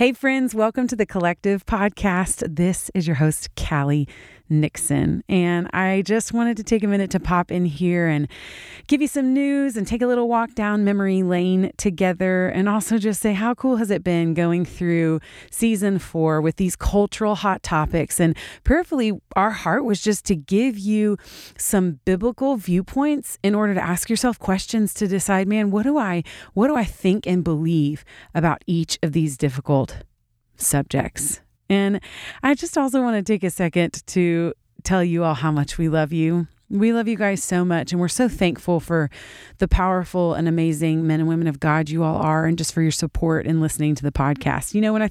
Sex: female